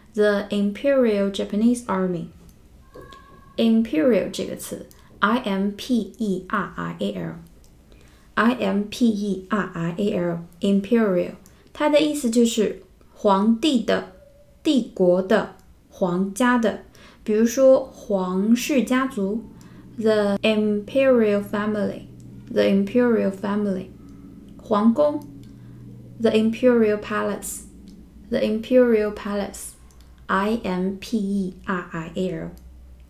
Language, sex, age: Chinese, female, 20-39